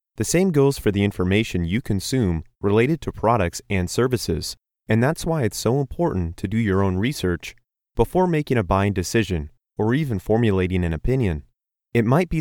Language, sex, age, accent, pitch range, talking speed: English, male, 30-49, American, 95-120 Hz, 180 wpm